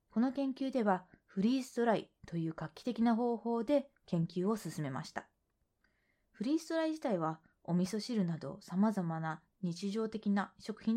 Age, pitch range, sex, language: 20-39, 175-230 Hz, female, Japanese